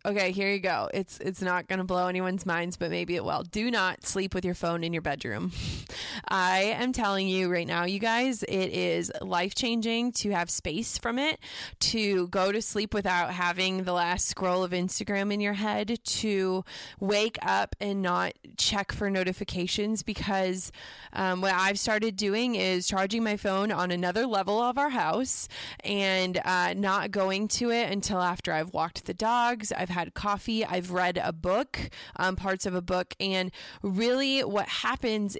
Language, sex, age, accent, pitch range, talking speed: English, female, 20-39, American, 180-210 Hz, 180 wpm